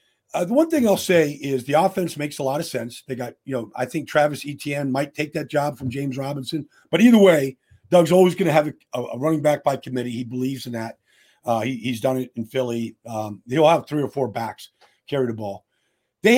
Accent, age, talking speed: American, 50-69, 240 wpm